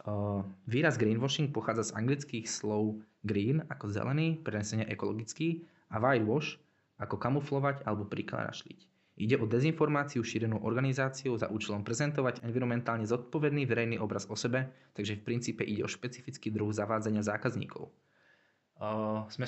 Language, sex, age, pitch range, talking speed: Slovak, male, 20-39, 100-120 Hz, 130 wpm